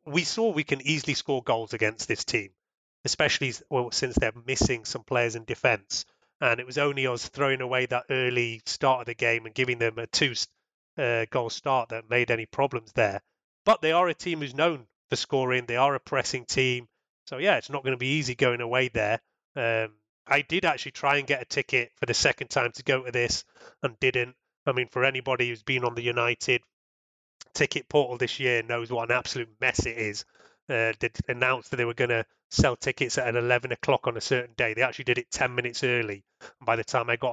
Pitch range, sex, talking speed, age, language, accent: 115-130 Hz, male, 220 wpm, 30-49, English, British